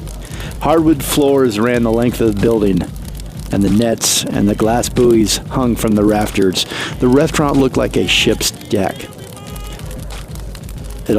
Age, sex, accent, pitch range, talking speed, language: 40-59, male, American, 110-135 Hz, 145 wpm, English